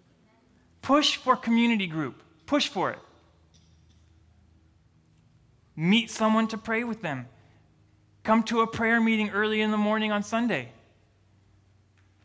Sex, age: male, 30-49